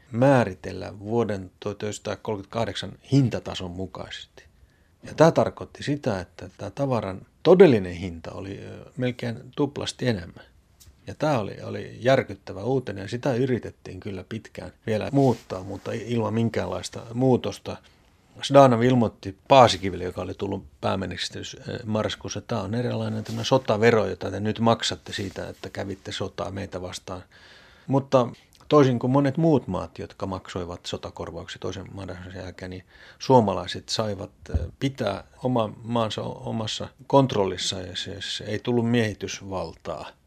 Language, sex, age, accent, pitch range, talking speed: Finnish, male, 30-49, native, 95-125 Hz, 125 wpm